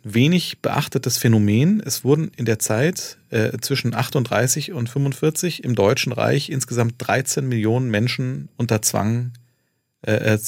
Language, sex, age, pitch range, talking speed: German, male, 40-59, 110-130 Hz, 130 wpm